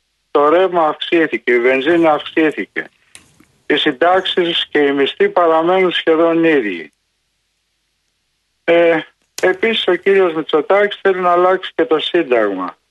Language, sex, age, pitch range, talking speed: Greek, male, 50-69, 145-185 Hz, 110 wpm